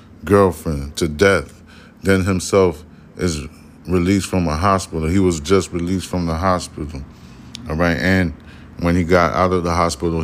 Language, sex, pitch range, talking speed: English, male, 80-95 Hz, 160 wpm